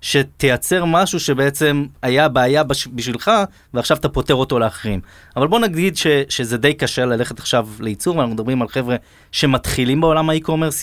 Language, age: Hebrew, 20-39